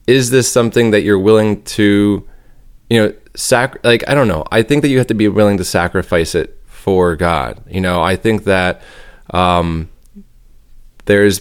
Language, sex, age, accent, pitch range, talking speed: English, male, 20-39, American, 90-105 Hz, 180 wpm